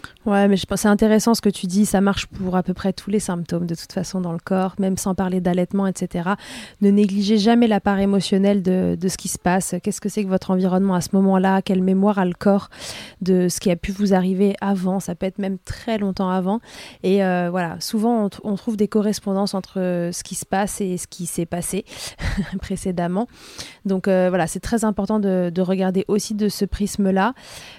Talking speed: 225 wpm